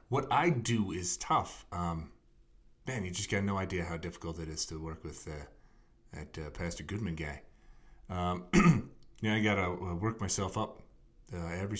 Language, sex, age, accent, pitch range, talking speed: English, male, 30-49, American, 85-115 Hz, 190 wpm